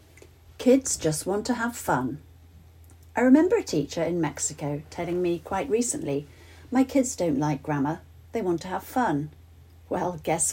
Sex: female